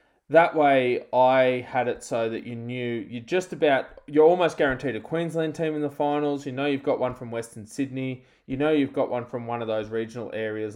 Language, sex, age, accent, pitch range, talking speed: English, male, 20-39, Australian, 115-145 Hz, 225 wpm